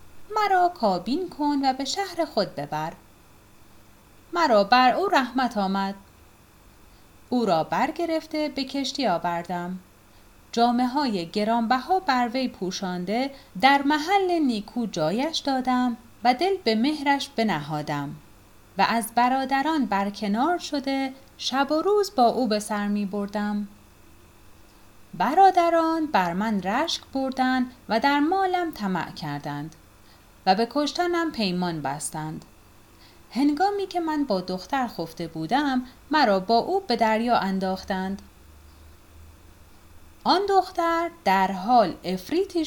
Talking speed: 115 wpm